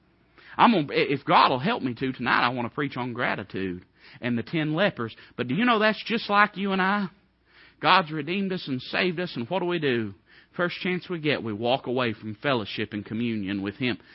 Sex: male